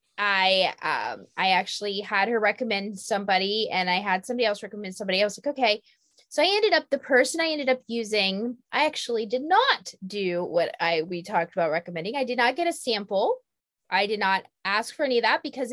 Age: 20-39